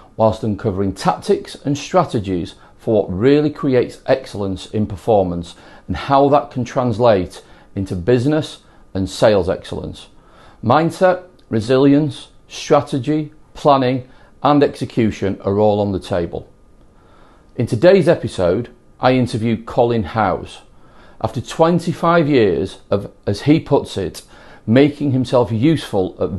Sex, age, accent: male, 40-59, British